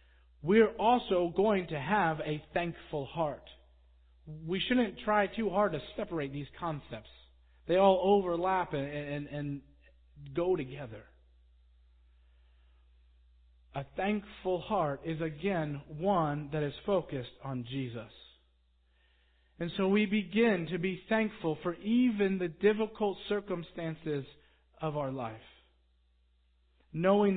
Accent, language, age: American, English, 40-59